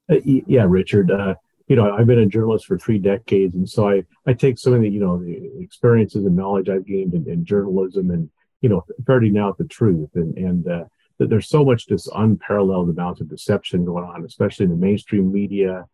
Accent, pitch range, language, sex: American, 95-115 Hz, English, male